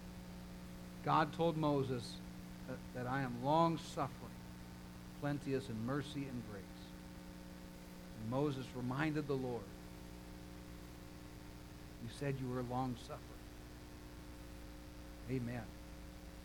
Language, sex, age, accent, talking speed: English, male, 60-79, American, 90 wpm